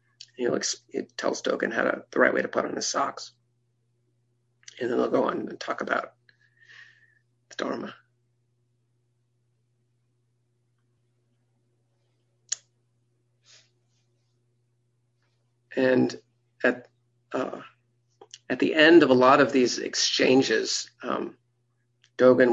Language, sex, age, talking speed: English, male, 40-59, 105 wpm